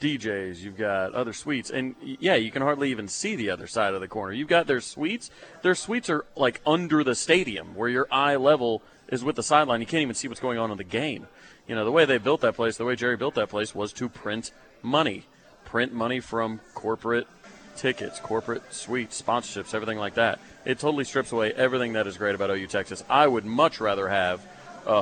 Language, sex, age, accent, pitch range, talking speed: English, male, 30-49, American, 100-120 Hz, 225 wpm